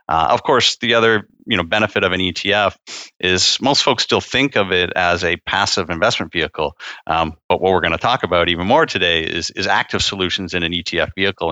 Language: English